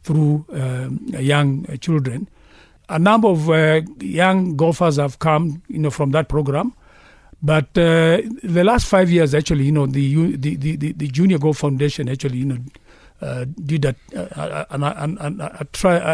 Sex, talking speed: male, 165 wpm